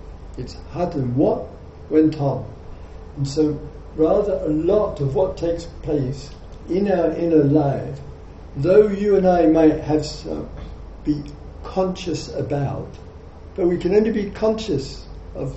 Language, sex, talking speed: English, male, 140 wpm